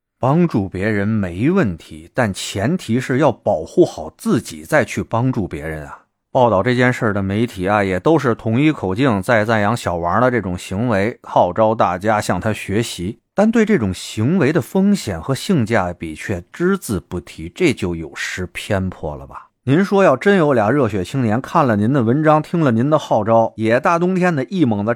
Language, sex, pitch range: Chinese, male, 90-125 Hz